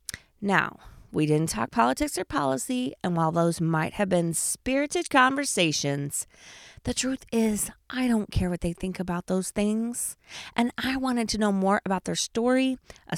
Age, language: 20-39, English